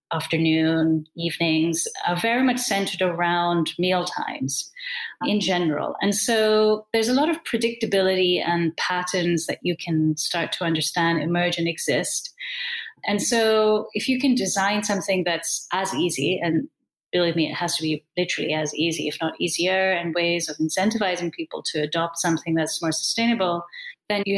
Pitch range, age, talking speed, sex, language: 170-225 Hz, 30-49, 160 wpm, female, English